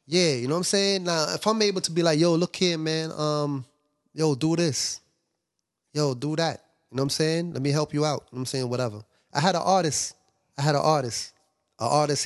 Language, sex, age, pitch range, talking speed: English, male, 20-39, 125-155 Hz, 245 wpm